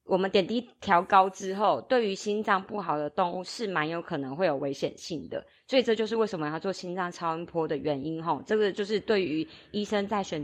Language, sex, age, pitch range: Chinese, female, 20-39, 160-200 Hz